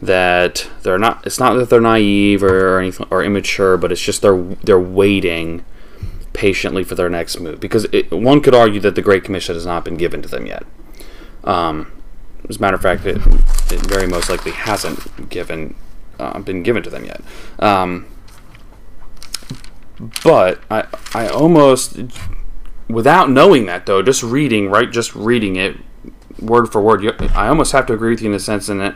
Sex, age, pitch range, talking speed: male, 20-39, 90-115 Hz, 180 wpm